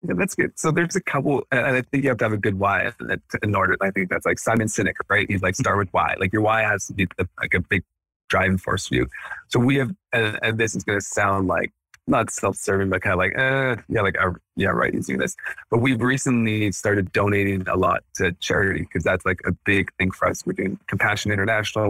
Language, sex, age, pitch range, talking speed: English, male, 20-39, 95-115 Hz, 245 wpm